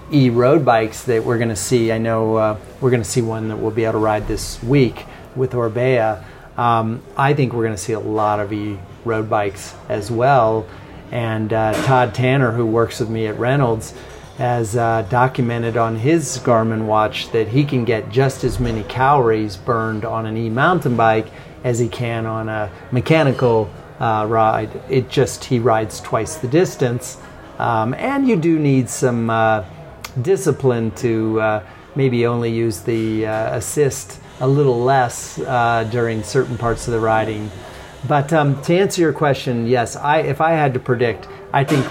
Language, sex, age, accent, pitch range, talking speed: English, male, 40-59, American, 110-140 Hz, 180 wpm